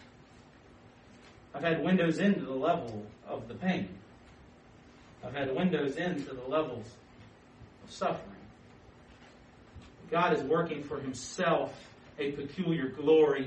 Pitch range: 140-195 Hz